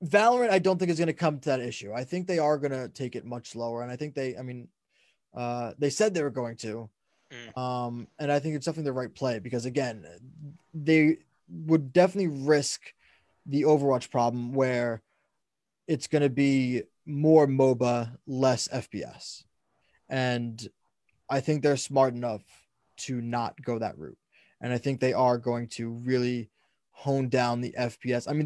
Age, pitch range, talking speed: 20-39, 125-155 Hz, 180 wpm